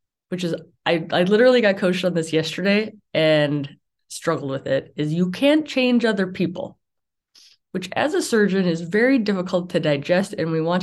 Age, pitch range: 20-39, 155-195 Hz